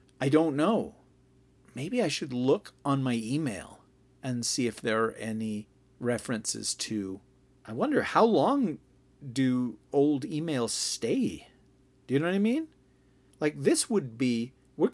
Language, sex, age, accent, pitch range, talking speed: English, male, 40-59, American, 110-130 Hz, 150 wpm